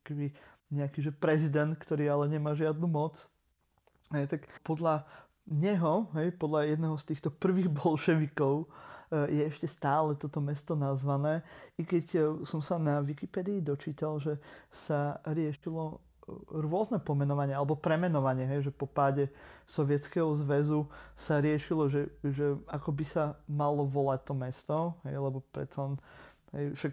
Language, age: Slovak, 30-49